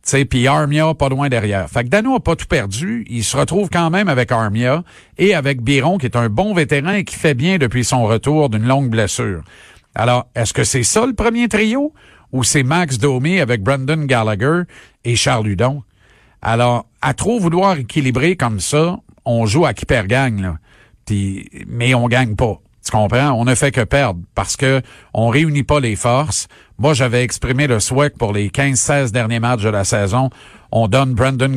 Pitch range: 110-145 Hz